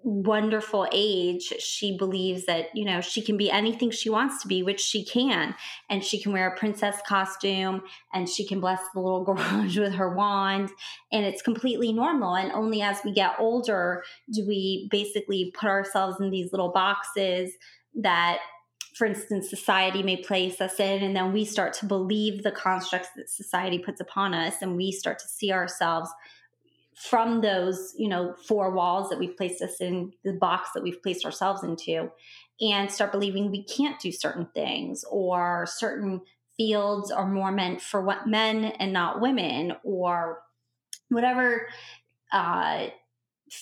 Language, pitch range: English, 180-215 Hz